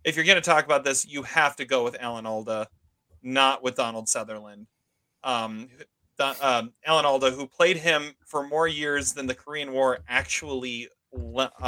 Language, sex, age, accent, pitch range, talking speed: English, male, 30-49, American, 125-165 Hz, 180 wpm